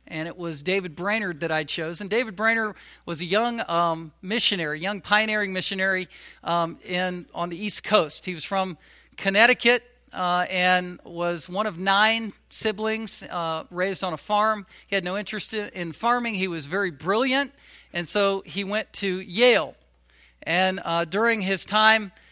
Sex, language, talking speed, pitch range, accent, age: male, English, 165 wpm, 185-220 Hz, American, 50-69